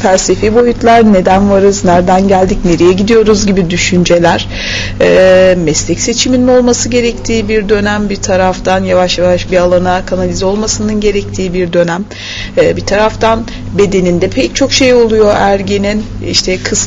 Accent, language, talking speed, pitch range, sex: native, Turkish, 140 wpm, 185-240 Hz, female